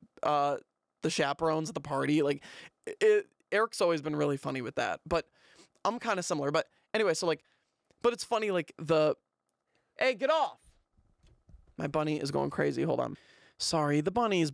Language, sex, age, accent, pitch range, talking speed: English, male, 20-39, American, 145-185 Hz, 170 wpm